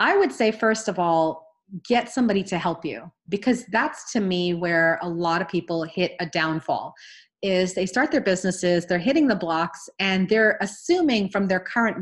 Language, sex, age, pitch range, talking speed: English, female, 30-49, 180-225 Hz, 190 wpm